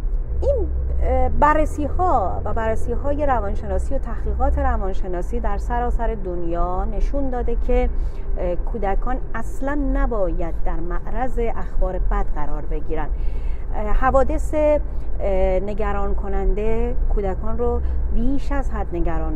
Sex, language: female, Persian